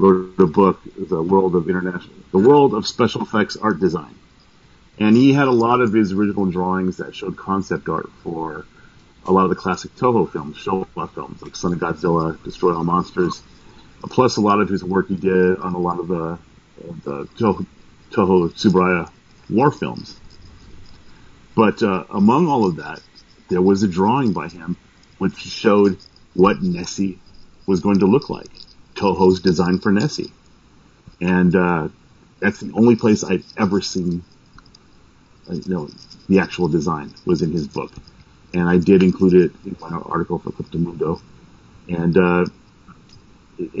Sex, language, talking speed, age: male, English, 165 wpm, 40-59